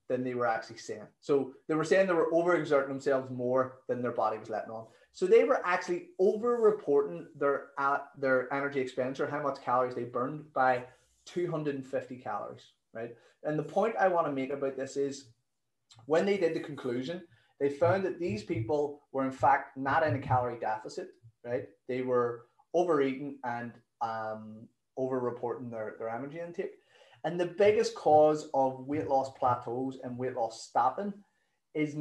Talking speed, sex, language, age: 175 wpm, male, English, 30-49